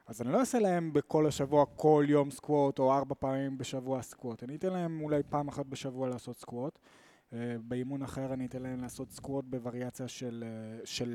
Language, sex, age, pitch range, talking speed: Hebrew, male, 20-39, 120-150 Hz, 185 wpm